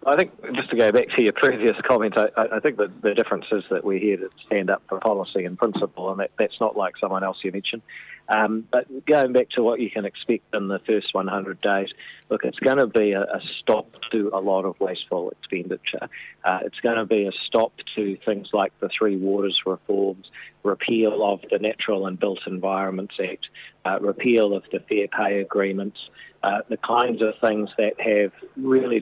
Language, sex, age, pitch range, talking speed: English, male, 40-59, 100-110 Hz, 210 wpm